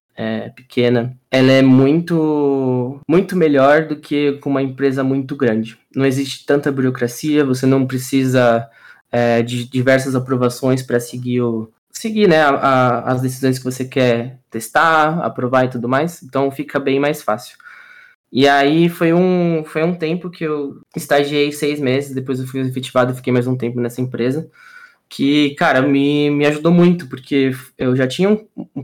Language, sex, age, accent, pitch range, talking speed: Portuguese, male, 20-39, Brazilian, 130-150 Hz, 160 wpm